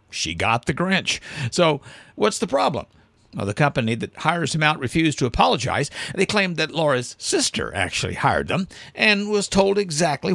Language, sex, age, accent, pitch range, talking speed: English, male, 50-69, American, 130-180 Hz, 175 wpm